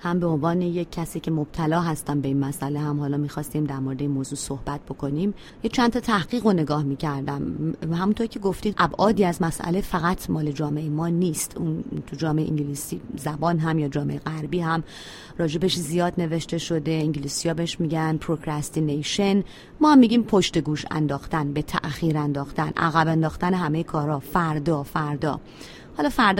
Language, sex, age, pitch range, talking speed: Persian, female, 30-49, 155-200 Hz, 165 wpm